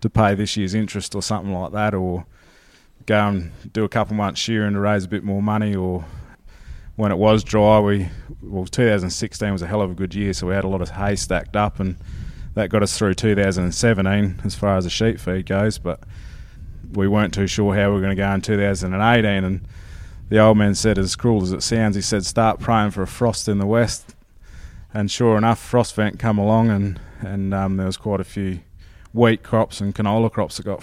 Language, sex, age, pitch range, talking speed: English, male, 20-39, 95-110 Hz, 225 wpm